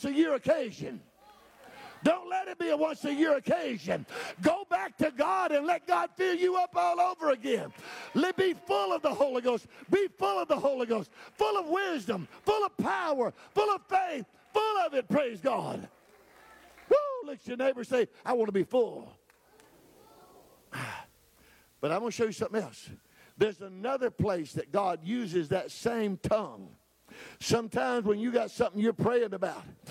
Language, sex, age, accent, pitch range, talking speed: English, male, 50-69, American, 230-300 Hz, 170 wpm